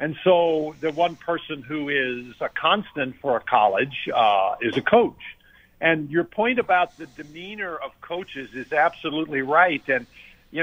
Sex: male